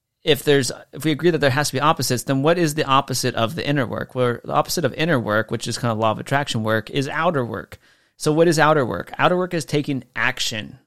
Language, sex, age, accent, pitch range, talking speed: English, male, 30-49, American, 110-130 Hz, 260 wpm